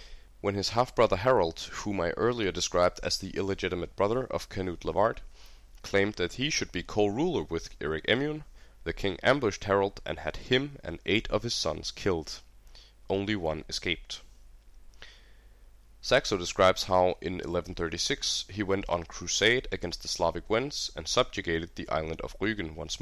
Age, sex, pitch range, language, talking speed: 20-39, male, 85-105 Hz, English, 155 wpm